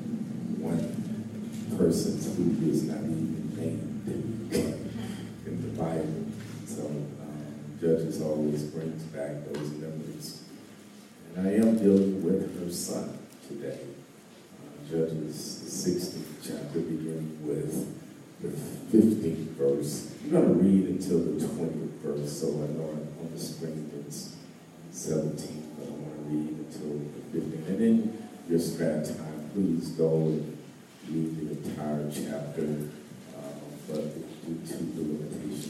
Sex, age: male, 50-69